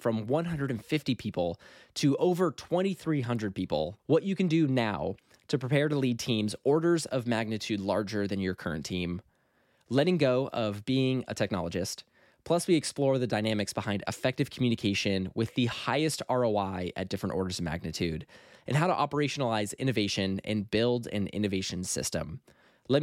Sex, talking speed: male, 155 wpm